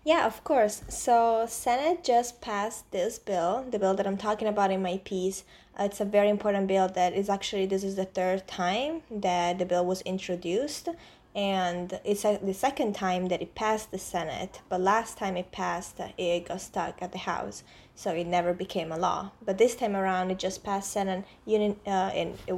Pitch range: 185-210 Hz